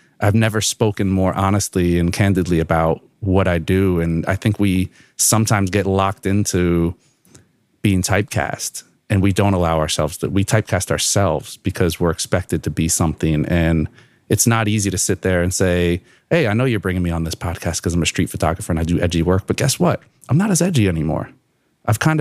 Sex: male